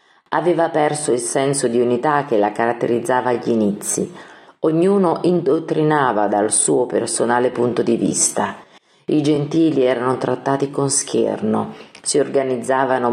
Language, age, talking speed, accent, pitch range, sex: Italian, 40-59, 125 wpm, native, 115-150 Hz, female